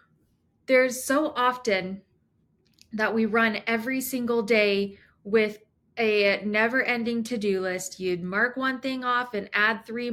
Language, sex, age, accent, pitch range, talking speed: English, female, 20-39, American, 200-235 Hz, 130 wpm